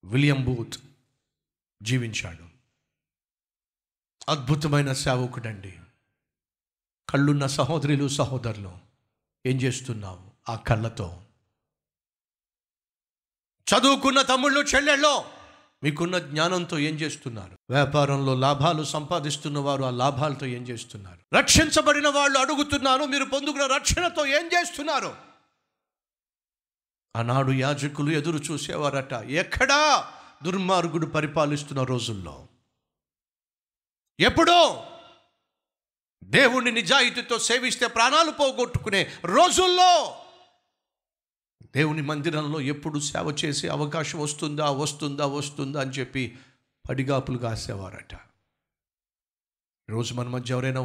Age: 50-69